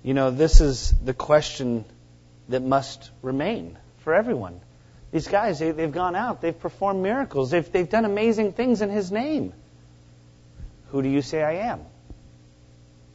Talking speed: 160 wpm